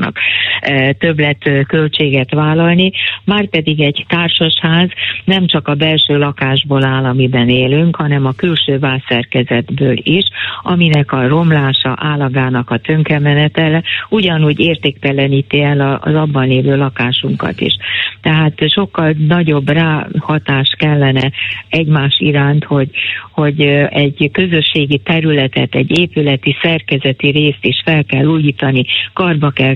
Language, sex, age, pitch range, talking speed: Hungarian, female, 40-59, 135-160 Hz, 115 wpm